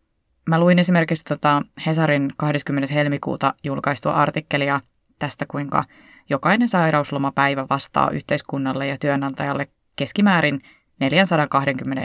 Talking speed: 95 wpm